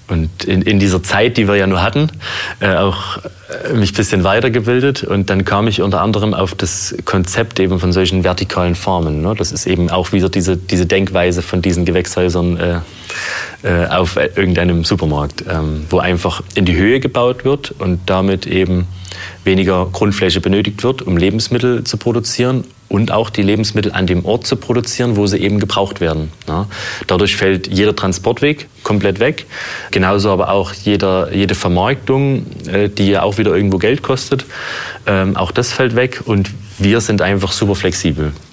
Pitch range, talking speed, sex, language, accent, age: 90-110 Hz, 160 wpm, male, German, German, 30-49